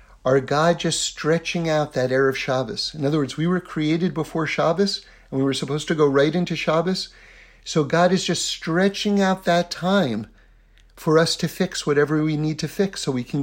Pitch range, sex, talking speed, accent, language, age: 135-195 Hz, male, 205 wpm, American, English, 50-69